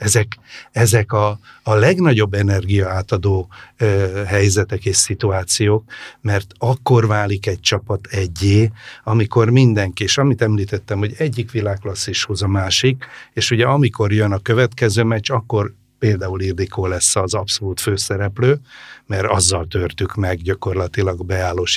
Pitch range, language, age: 100-120 Hz, Hungarian, 60-79